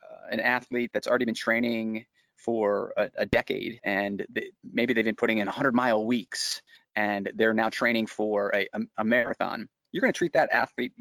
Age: 30-49